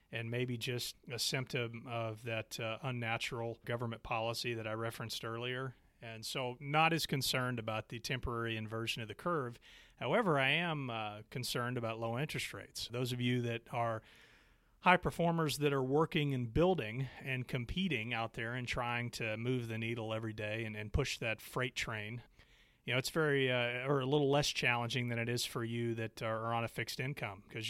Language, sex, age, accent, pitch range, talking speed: English, male, 30-49, American, 110-130 Hz, 195 wpm